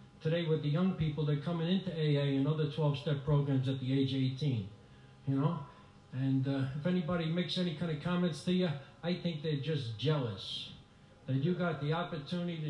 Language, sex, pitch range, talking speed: English, male, 135-170 Hz, 190 wpm